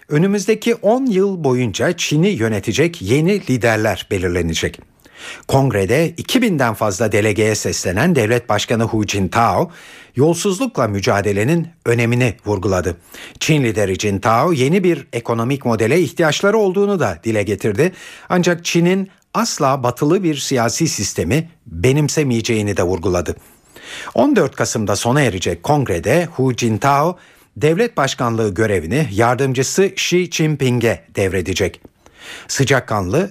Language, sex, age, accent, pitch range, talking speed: Turkish, male, 60-79, native, 110-165 Hz, 105 wpm